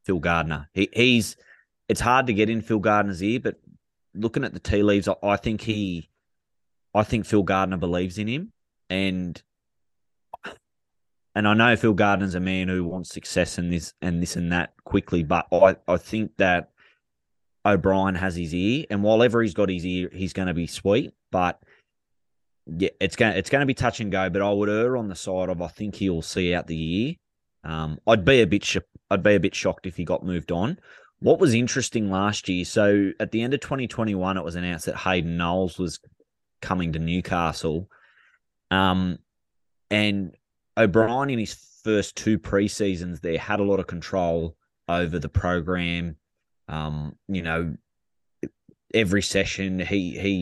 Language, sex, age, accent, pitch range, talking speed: English, male, 20-39, Australian, 85-105 Hz, 185 wpm